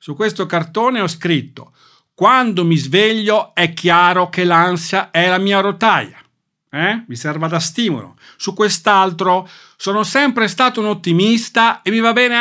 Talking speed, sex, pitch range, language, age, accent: 155 wpm, male, 165-245 Hz, Italian, 50-69, native